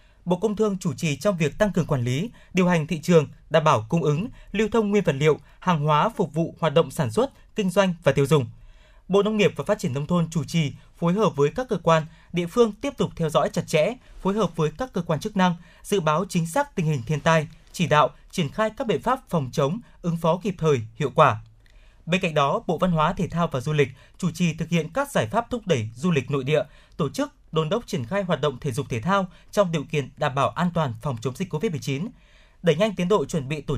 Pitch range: 145-195 Hz